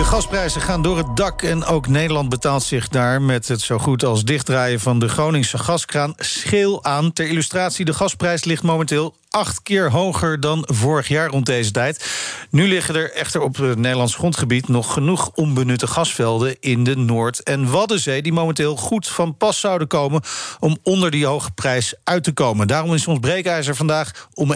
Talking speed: 190 wpm